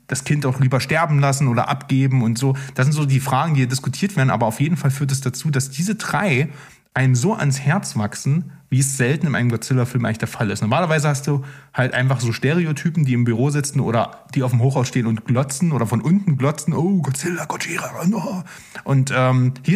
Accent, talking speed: German, 225 wpm